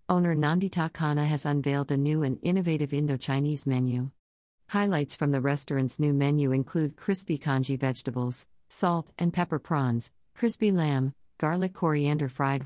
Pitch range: 130-160 Hz